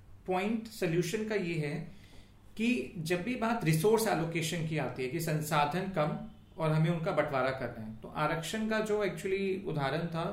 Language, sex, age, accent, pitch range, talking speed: Hindi, male, 40-59, native, 145-190 Hz, 175 wpm